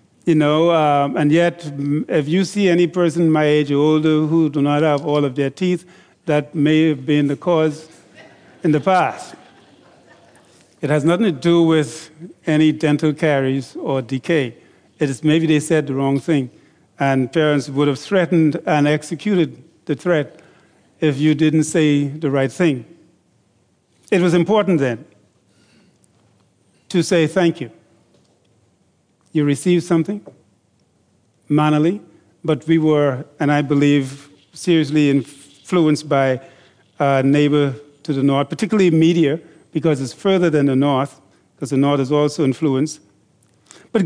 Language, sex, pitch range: English, male, 145-170 Hz